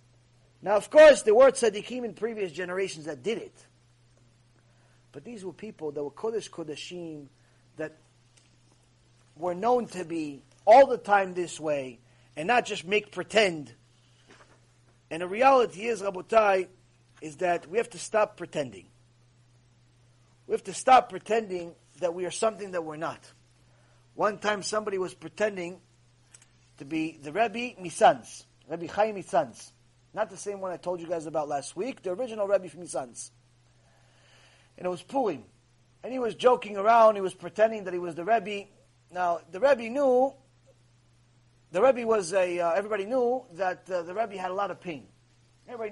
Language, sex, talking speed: English, male, 165 wpm